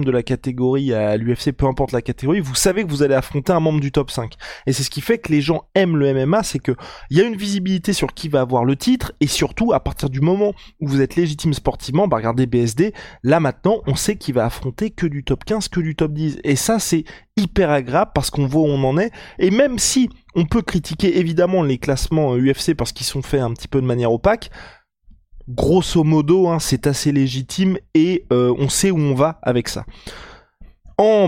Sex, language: male, French